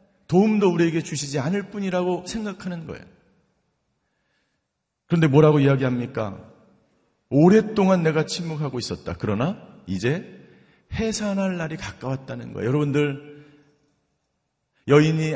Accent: native